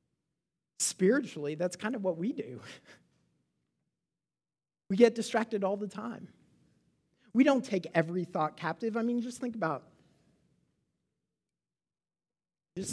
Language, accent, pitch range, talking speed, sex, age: English, American, 145-185 Hz, 115 wpm, male, 40-59